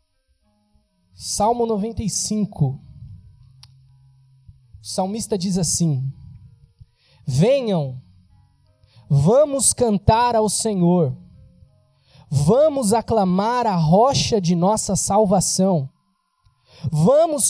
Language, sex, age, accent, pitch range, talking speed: Portuguese, male, 20-39, Brazilian, 130-215 Hz, 65 wpm